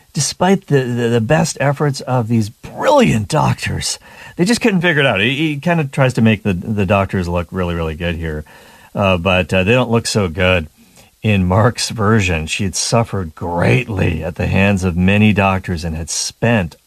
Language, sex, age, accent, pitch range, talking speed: English, male, 40-59, American, 90-120 Hz, 195 wpm